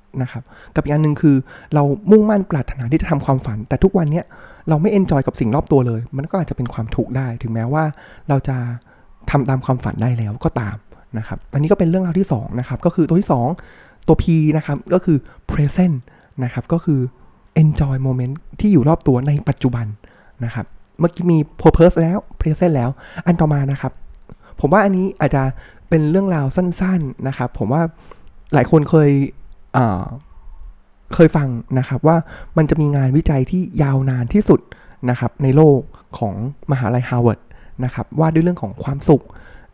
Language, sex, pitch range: Thai, male, 125-160 Hz